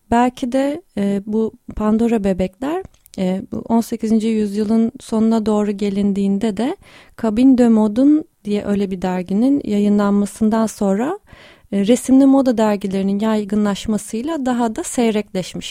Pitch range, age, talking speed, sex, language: 195-240 Hz, 30-49, 120 wpm, female, Turkish